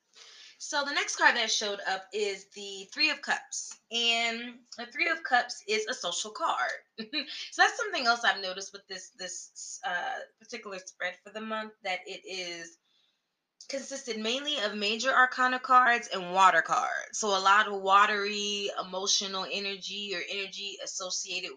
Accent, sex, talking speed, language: American, female, 160 wpm, English